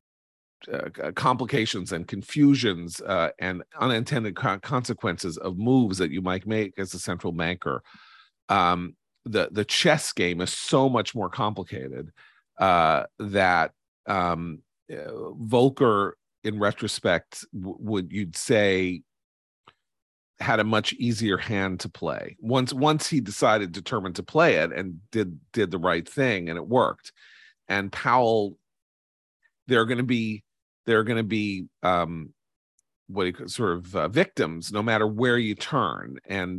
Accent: American